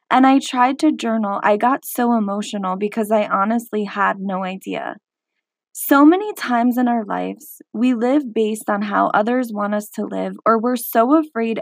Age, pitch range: 20-39, 205-255 Hz